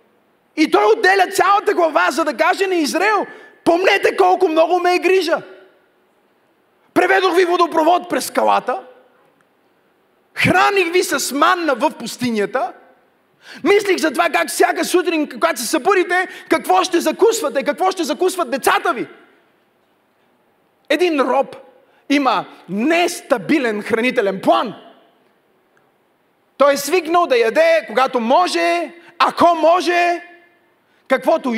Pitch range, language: 310-355 Hz, Bulgarian